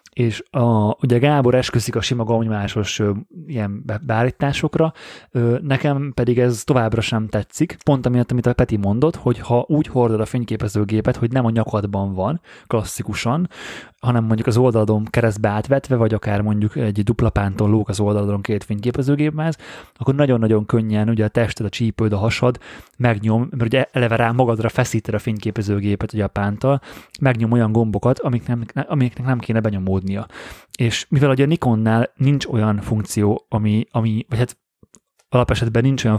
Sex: male